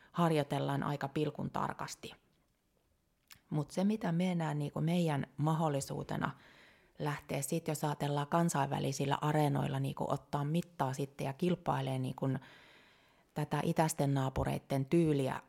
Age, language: 30-49, Finnish